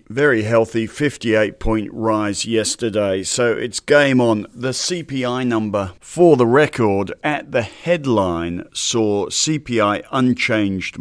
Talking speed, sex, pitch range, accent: 115 wpm, male, 95-115 Hz, British